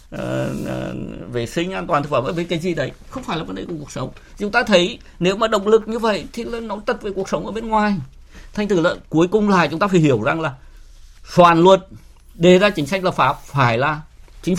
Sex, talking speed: male, 255 wpm